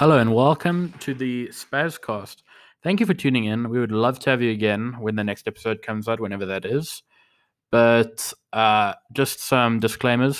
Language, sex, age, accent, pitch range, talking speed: English, male, 20-39, Australian, 105-130 Hz, 185 wpm